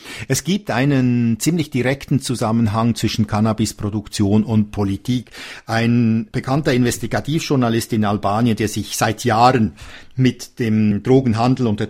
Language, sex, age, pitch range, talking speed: German, male, 50-69, 110-135 Hz, 120 wpm